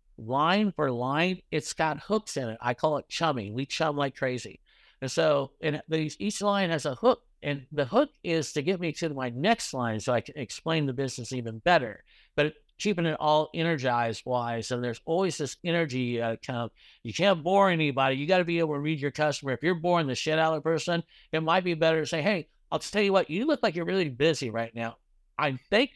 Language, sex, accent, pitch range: English, male, American, 130-170 Hz